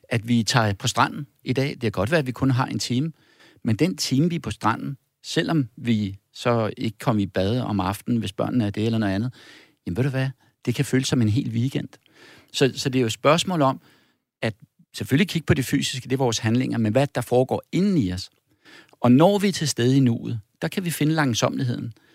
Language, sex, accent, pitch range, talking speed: Danish, male, native, 115-140 Hz, 240 wpm